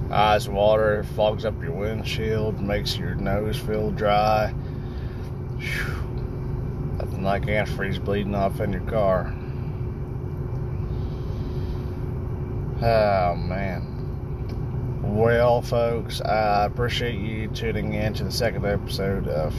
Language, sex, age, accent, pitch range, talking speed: English, male, 30-49, American, 100-125 Hz, 100 wpm